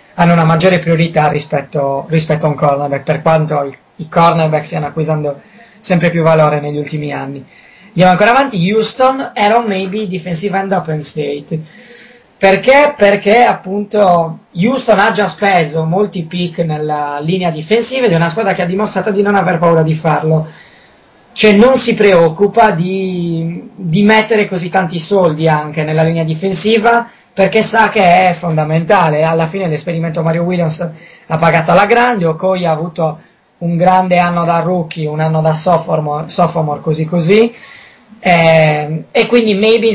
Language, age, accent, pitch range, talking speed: Italian, 20-39, native, 160-205 Hz, 155 wpm